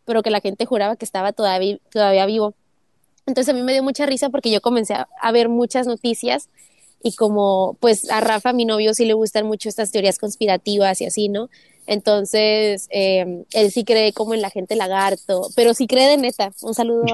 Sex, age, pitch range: female, 20-39, 195-245 Hz